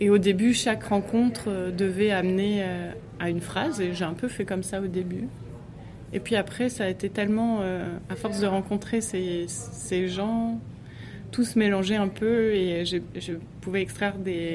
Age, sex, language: 20-39, female, French